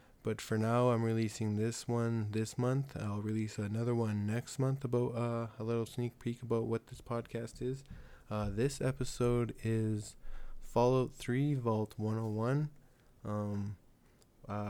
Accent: American